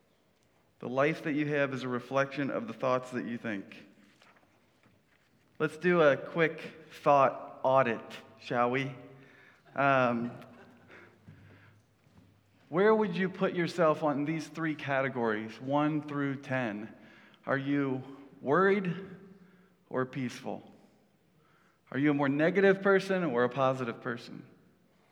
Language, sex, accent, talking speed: English, male, American, 120 wpm